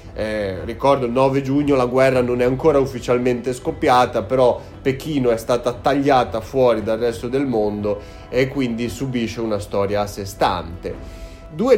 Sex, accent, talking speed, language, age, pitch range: male, native, 160 wpm, Italian, 30-49, 115-145 Hz